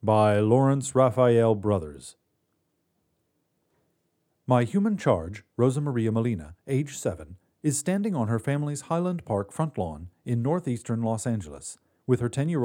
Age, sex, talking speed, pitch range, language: 40-59, male, 140 wpm, 100-145 Hz, English